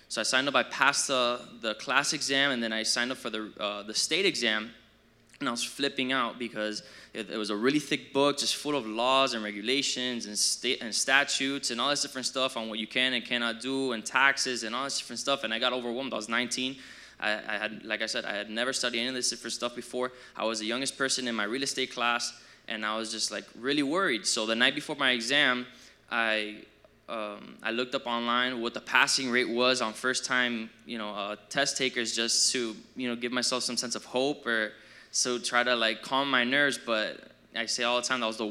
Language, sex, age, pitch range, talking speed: English, male, 20-39, 115-130 Hz, 240 wpm